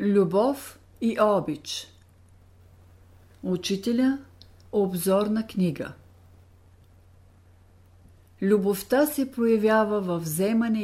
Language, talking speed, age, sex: Bulgarian, 60 wpm, 50-69, female